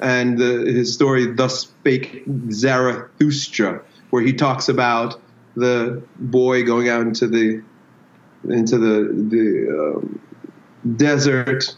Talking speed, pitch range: 110 wpm, 120-170 Hz